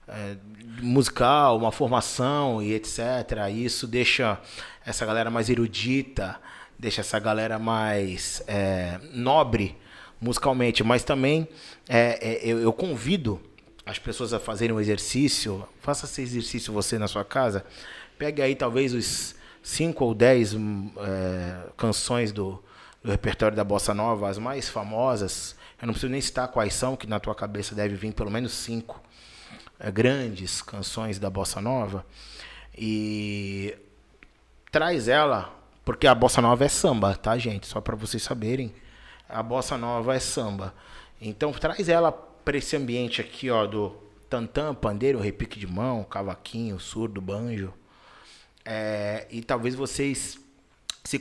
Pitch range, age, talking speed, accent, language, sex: 105-125 Hz, 20-39, 135 wpm, Brazilian, Portuguese, male